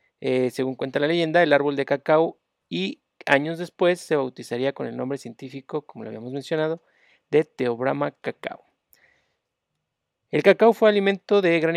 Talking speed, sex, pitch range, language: 160 wpm, male, 130-170 Hz, Spanish